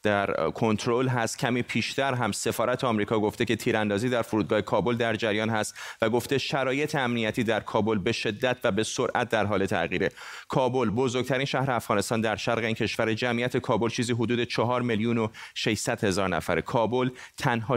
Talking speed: 170 wpm